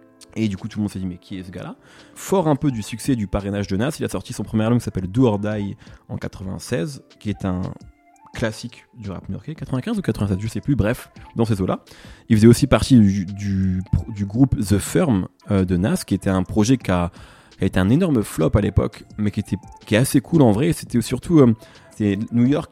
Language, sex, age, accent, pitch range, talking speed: French, male, 20-39, French, 100-130 Hz, 240 wpm